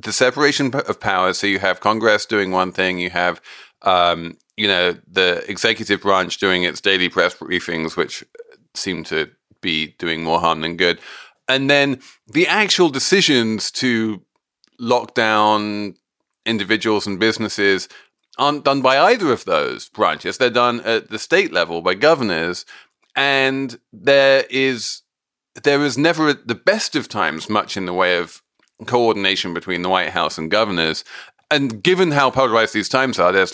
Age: 30-49